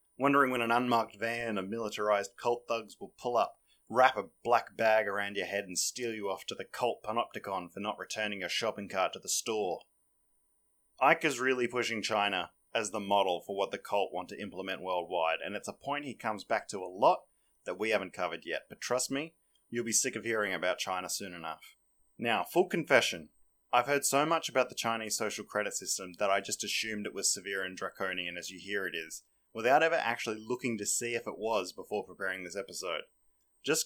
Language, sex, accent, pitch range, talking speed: English, male, Australian, 100-135 Hz, 215 wpm